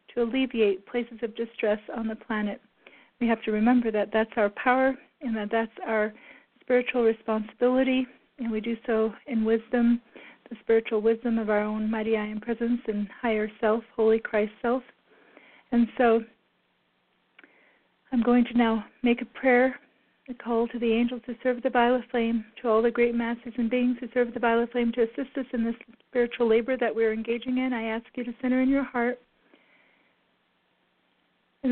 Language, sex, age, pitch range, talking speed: English, female, 40-59, 230-250 Hz, 180 wpm